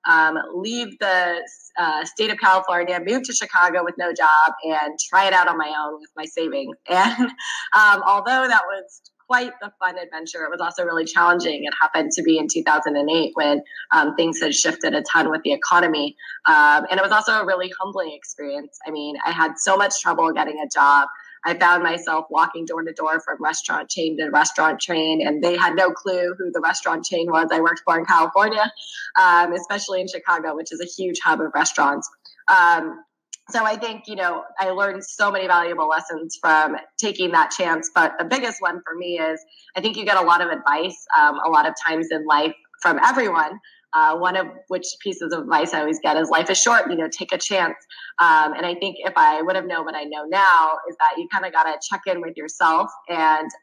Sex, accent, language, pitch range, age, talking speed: female, American, English, 160-200 Hz, 20-39, 220 wpm